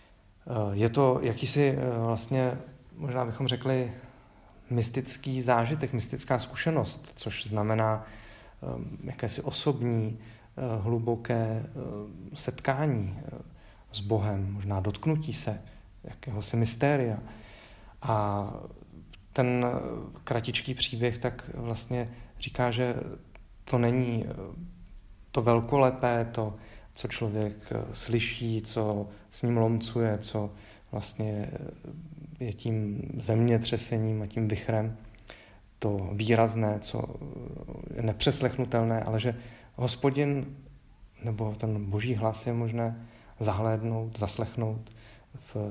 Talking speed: 90 wpm